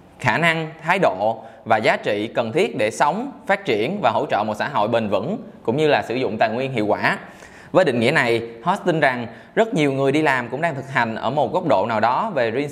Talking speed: 250 wpm